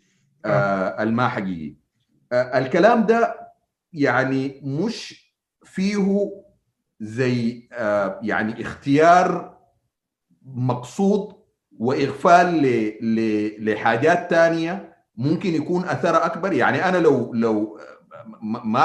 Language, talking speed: Arabic, 80 wpm